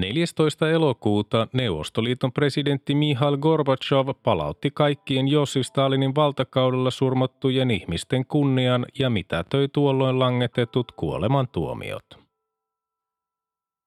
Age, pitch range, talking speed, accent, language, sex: 30-49, 115-140 Hz, 80 wpm, native, Finnish, male